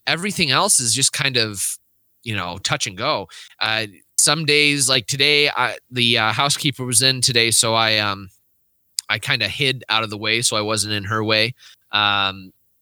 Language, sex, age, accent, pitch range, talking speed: English, male, 20-39, American, 110-145 Hz, 190 wpm